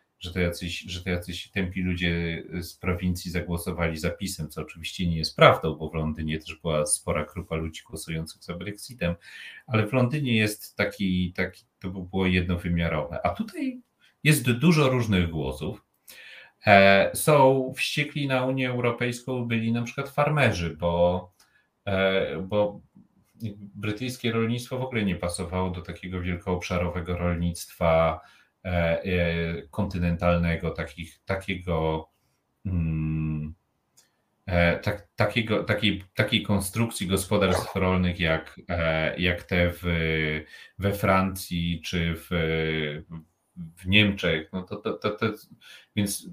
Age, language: 40-59, Polish